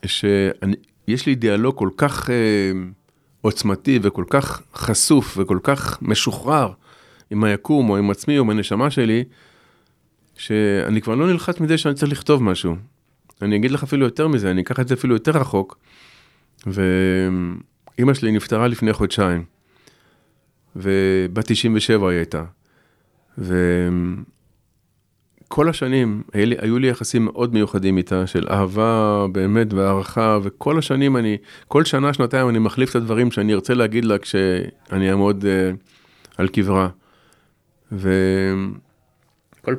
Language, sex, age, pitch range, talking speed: Hebrew, male, 40-59, 100-130 Hz, 130 wpm